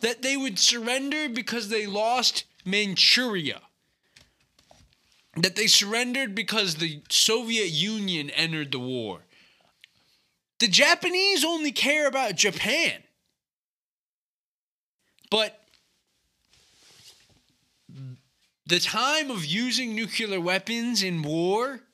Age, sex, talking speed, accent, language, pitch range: 20-39, male, 90 wpm, American, English, 165-235 Hz